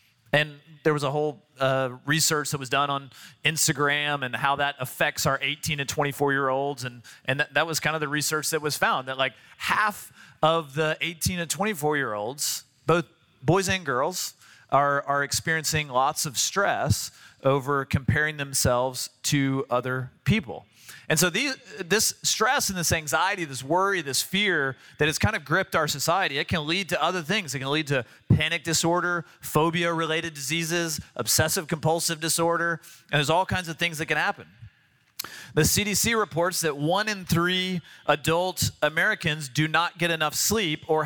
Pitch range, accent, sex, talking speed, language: 135-165 Hz, American, male, 170 wpm, English